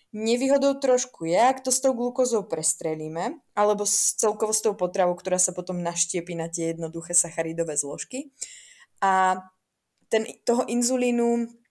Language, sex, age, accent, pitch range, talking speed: Czech, female, 20-39, native, 185-250 Hz, 145 wpm